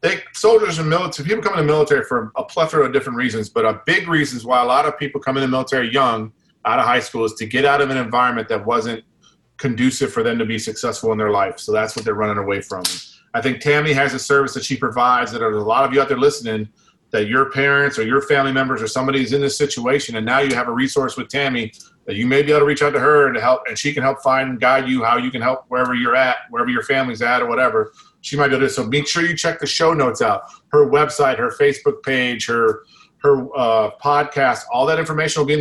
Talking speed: 275 wpm